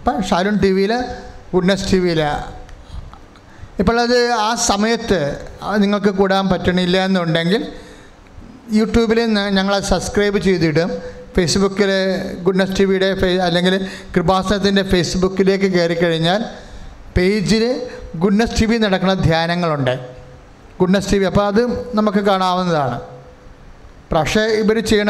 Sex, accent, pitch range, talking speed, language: male, Indian, 170-210 Hz, 105 wpm, English